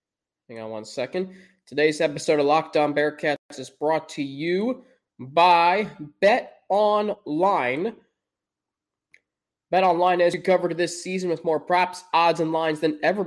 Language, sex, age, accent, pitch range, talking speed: English, male, 20-39, American, 145-180 Hz, 140 wpm